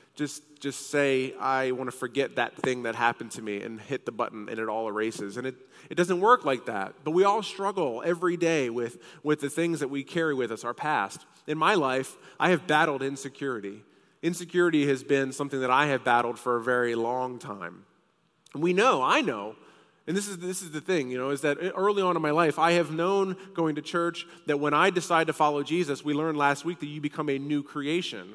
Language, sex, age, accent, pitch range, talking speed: English, male, 30-49, American, 135-175 Hz, 230 wpm